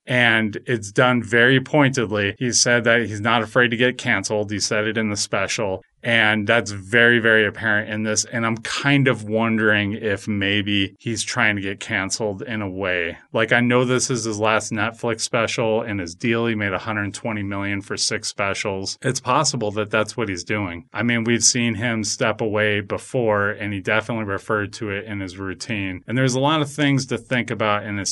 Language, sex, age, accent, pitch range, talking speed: English, male, 30-49, American, 100-120 Hz, 205 wpm